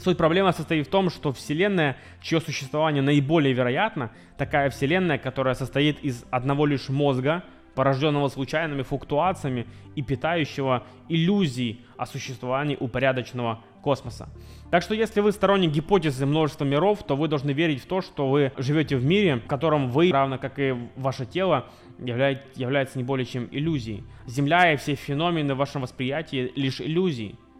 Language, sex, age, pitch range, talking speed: Russian, male, 20-39, 130-165 Hz, 150 wpm